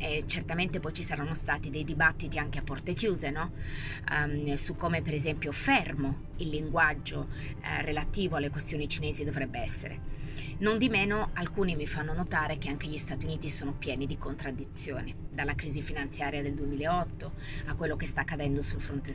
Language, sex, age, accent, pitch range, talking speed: Italian, female, 20-39, native, 145-170 Hz, 175 wpm